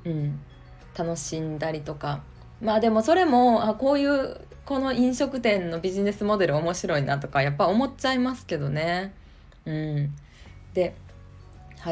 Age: 20-39